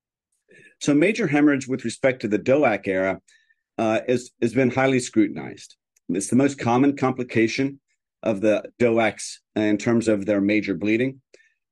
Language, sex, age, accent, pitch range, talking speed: English, male, 40-59, American, 110-135 Hz, 145 wpm